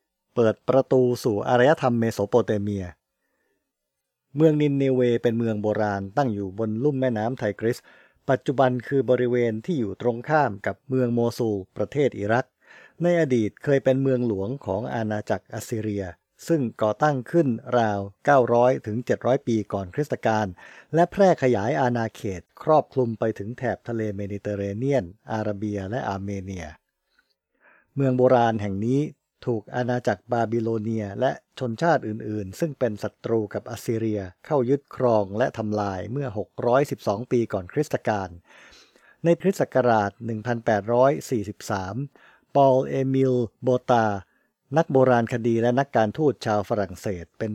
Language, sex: English, male